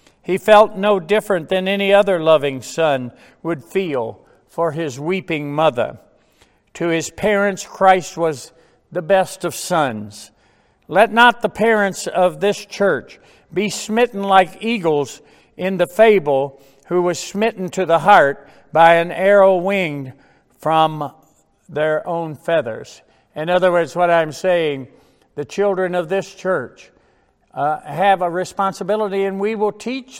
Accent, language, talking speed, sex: American, English, 140 wpm, male